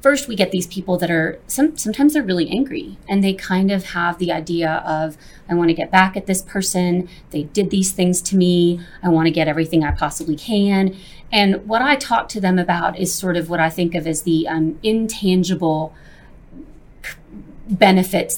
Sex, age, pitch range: female, 30-49, 160-200 Hz